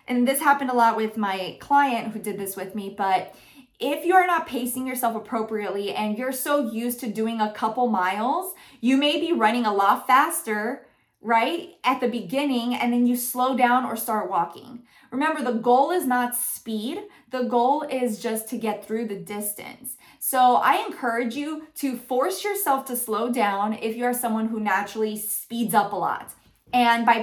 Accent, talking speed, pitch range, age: American, 185 wpm, 215-260 Hz, 20-39